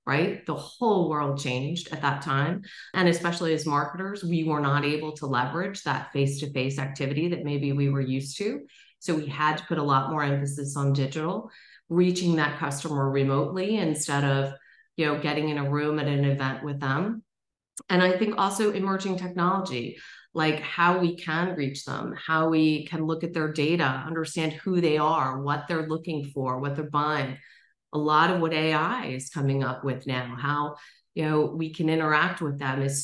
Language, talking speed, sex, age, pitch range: English, 190 wpm, female, 30-49, 140-170 Hz